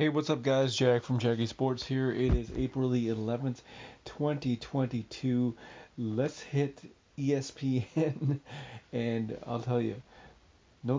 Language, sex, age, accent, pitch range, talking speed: English, male, 40-59, American, 115-130 Hz, 130 wpm